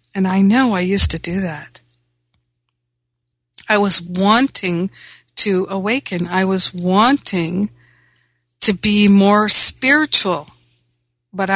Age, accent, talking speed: 50-69, American, 110 wpm